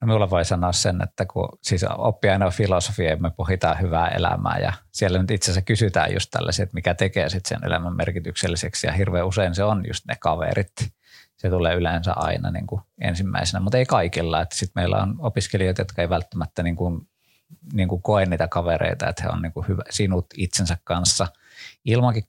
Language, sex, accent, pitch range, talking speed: Finnish, male, native, 90-110 Hz, 200 wpm